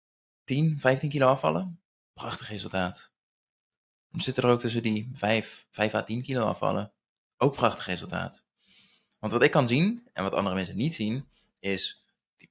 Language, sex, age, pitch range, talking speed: Dutch, male, 20-39, 100-130 Hz, 165 wpm